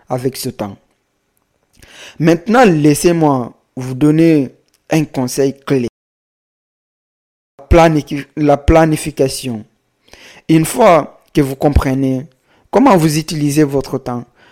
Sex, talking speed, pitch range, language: male, 90 wpm, 130-160 Hz, French